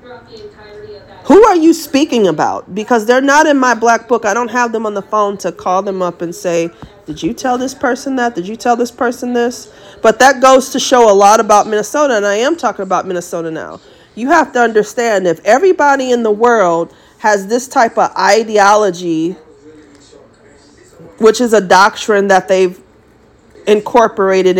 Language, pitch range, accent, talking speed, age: English, 190-245 Hz, American, 180 wpm, 40-59